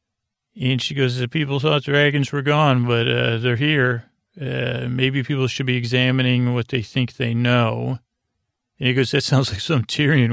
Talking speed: 190 wpm